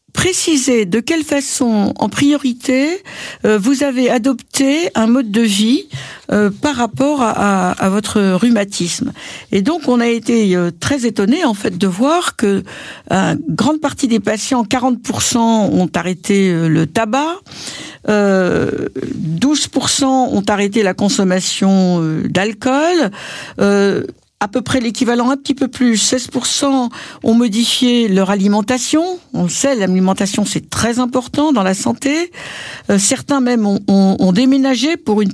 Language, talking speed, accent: French, 135 wpm, French